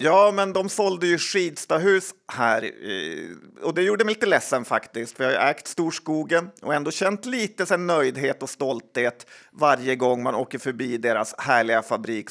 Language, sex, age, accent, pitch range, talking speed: Swedish, male, 40-59, native, 125-160 Hz, 170 wpm